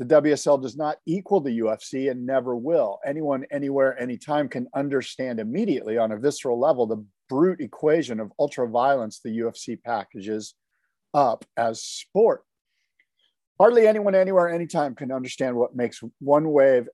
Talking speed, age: 145 wpm, 50-69